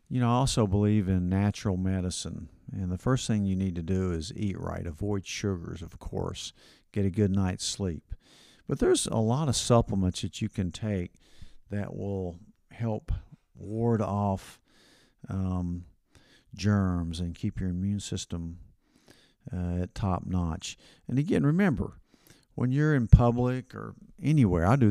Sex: male